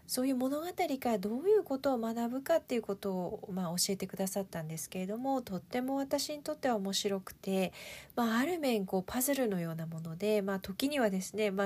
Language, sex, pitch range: Japanese, female, 190-240 Hz